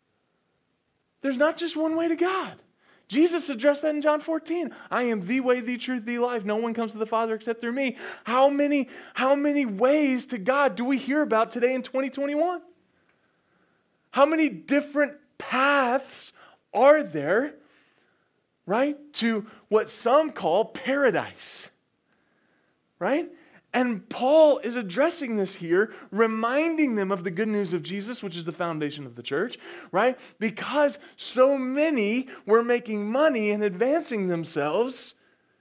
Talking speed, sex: 150 wpm, male